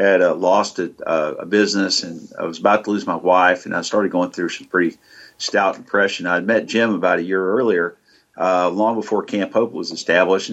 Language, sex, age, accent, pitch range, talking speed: English, male, 50-69, American, 90-110 Hz, 220 wpm